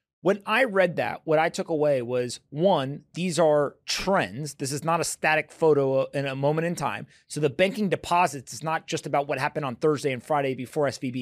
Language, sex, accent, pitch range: English, male, American, 135-160 Hz